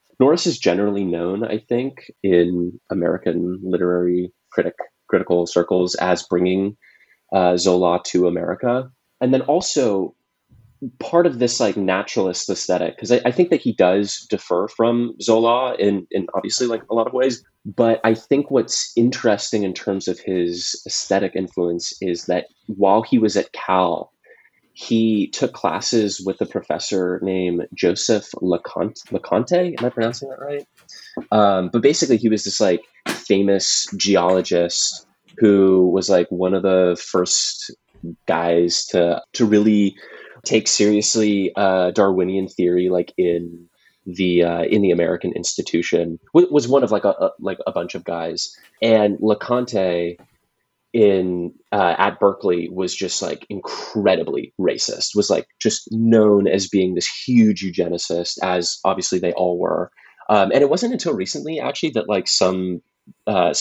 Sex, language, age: male, English, 20-39